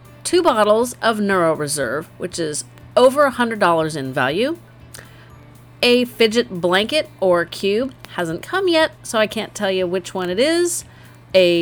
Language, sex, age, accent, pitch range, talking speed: English, female, 40-59, American, 180-260 Hz, 145 wpm